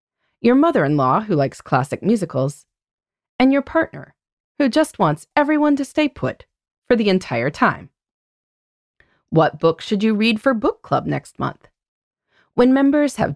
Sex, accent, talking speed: female, American, 150 wpm